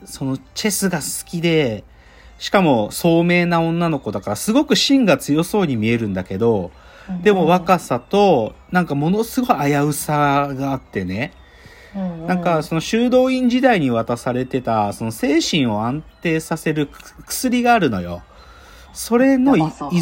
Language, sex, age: Japanese, male, 40-59